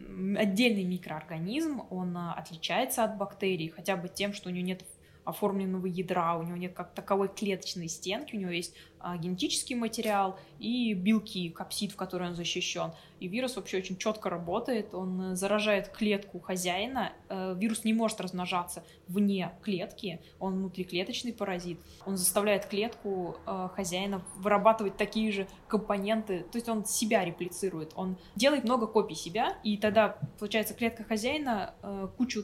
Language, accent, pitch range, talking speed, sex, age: Russian, native, 180-215 Hz, 140 wpm, female, 20-39